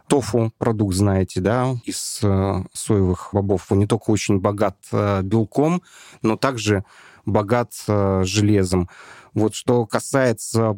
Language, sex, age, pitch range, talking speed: Russian, male, 30-49, 100-120 Hz, 105 wpm